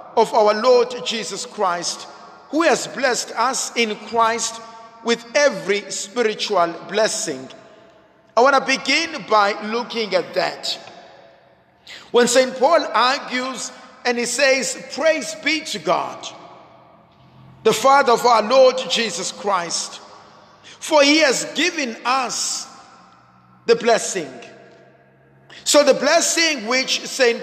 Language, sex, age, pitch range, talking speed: English, male, 50-69, 225-275 Hz, 115 wpm